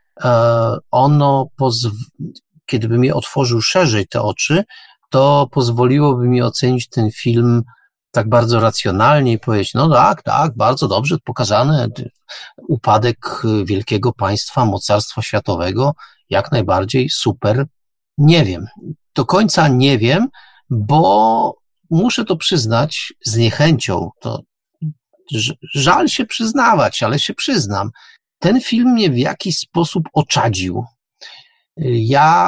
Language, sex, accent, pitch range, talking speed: Polish, male, native, 120-165 Hz, 110 wpm